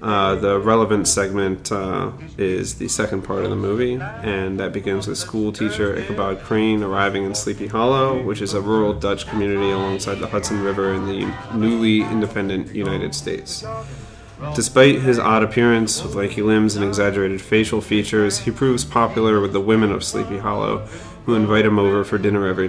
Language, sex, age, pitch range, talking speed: English, male, 30-49, 100-110 Hz, 175 wpm